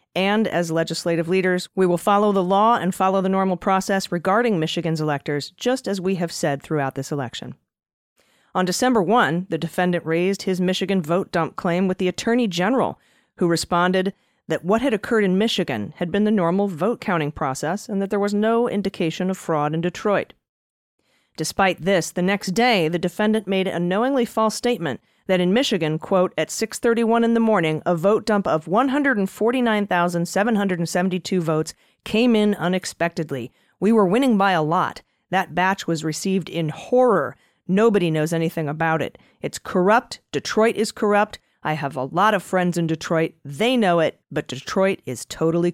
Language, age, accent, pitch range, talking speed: English, 40-59, American, 165-205 Hz, 175 wpm